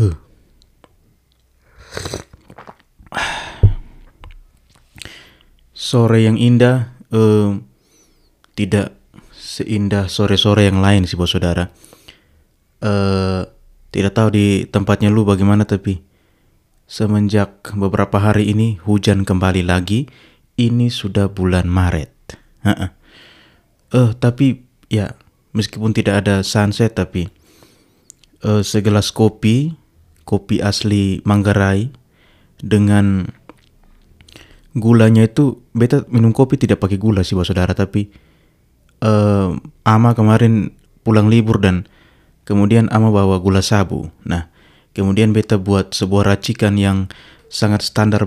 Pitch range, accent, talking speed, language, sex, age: 95-110 Hz, native, 95 wpm, Indonesian, male, 20-39